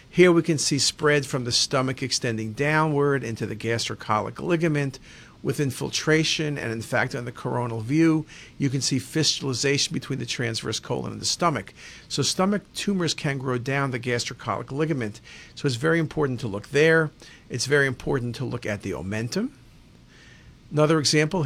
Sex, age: male, 50-69